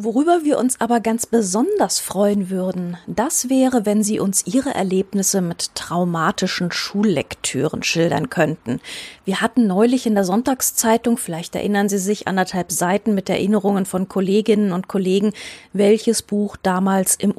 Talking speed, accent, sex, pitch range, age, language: 145 wpm, German, female, 180-225 Hz, 30-49, German